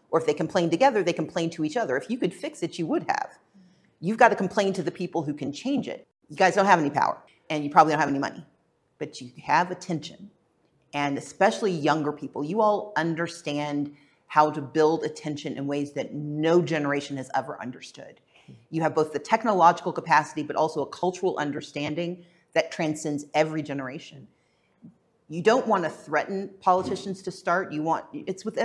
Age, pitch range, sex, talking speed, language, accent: 40-59, 150-190 Hz, female, 195 wpm, English, American